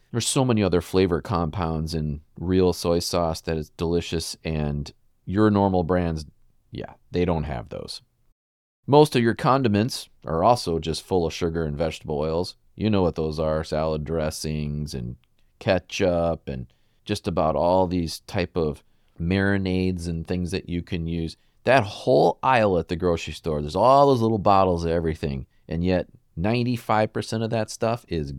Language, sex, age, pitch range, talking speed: English, male, 40-59, 80-120 Hz, 165 wpm